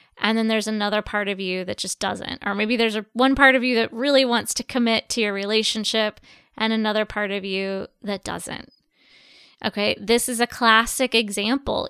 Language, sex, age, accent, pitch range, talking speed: English, female, 20-39, American, 210-250 Hz, 195 wpm